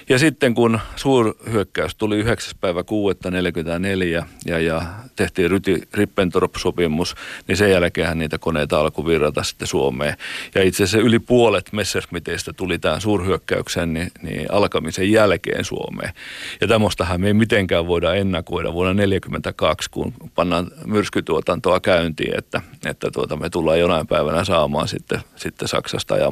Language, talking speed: Finnish, 130 wpm